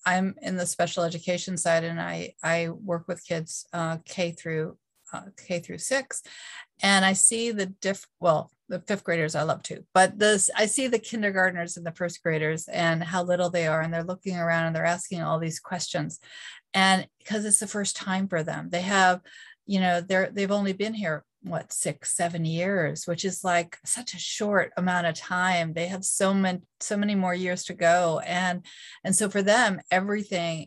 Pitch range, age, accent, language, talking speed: 170-195 Hz, 40-59, American, English, 200 wpm